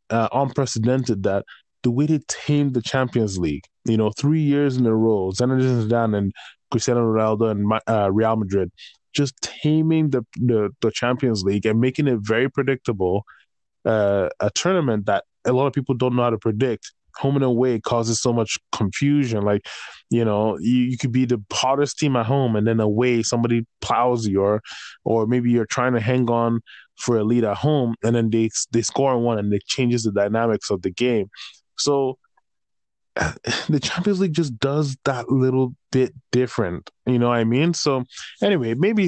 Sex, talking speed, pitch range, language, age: male, 185 wpm, 110-135 Hz, English, 20-39